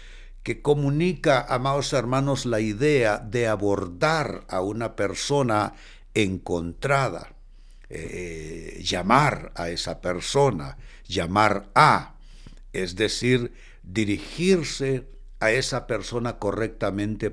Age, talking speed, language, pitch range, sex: 60-79, 90 wpm, Spanish, 105-145 Hz, male